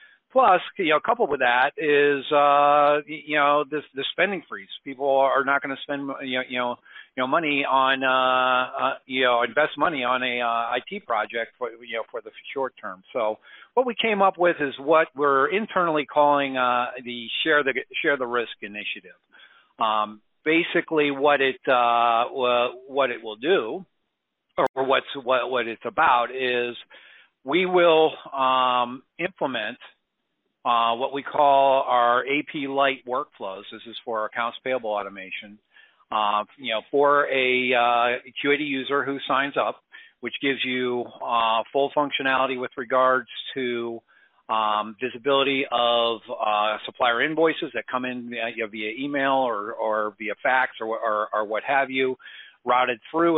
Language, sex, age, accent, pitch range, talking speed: English, male, 50-69, American, 120-145 Hz, 165 wpm